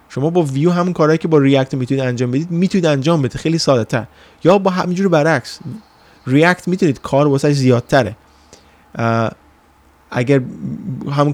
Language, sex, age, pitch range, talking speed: Persian, male, 20-39, 120-155 Hz, 150 wpm